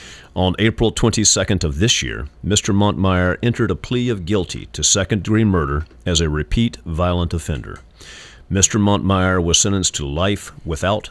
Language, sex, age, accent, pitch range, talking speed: English, male, 50-69, American, 80-105 Hz, 150 wpm